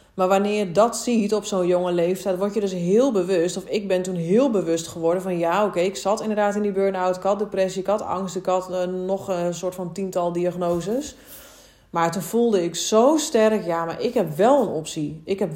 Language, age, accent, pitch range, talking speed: Dutch, 30-49, Dutch, 175-215 Hz, 230 wpm